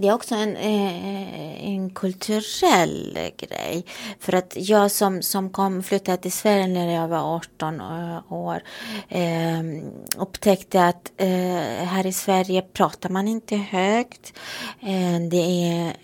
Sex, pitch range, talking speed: female, 175-215 Hz, 120 wpm